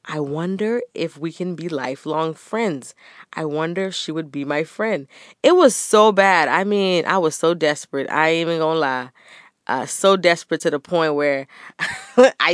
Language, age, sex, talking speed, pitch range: English, 20-39, female, 185 wpm, 140-170 Hz